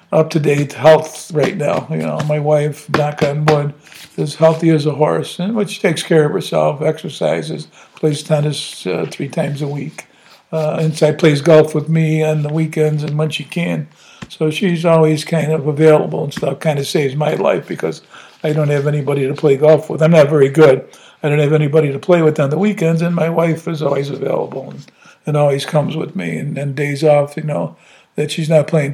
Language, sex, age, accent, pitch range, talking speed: English, male, 60-79, American, 145-160 Hz, 210 wpm